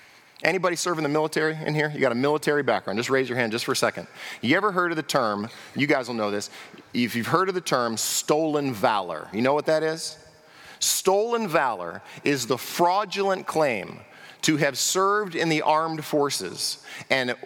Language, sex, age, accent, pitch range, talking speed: English, male, 40-59, American, 135-175 Hz, 195 wpm